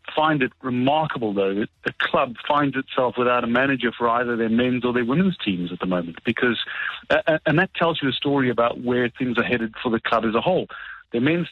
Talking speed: 230 wpm